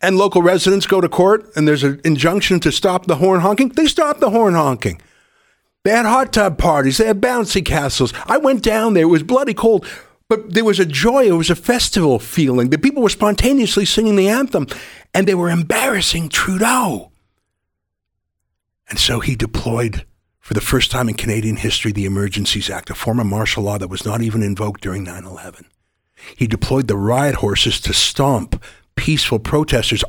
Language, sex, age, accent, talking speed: English, male, 50-69, American, 190 wpm